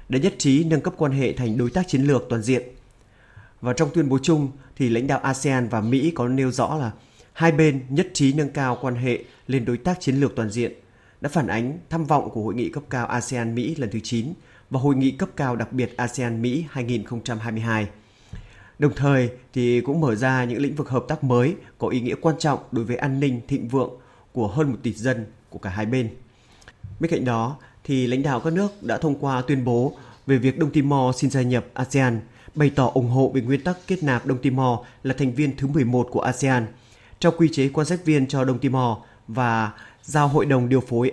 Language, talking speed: Vietnamese, 225 wpm